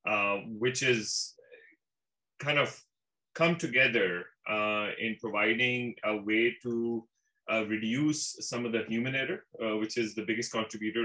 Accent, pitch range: Indian, 105-120 Hz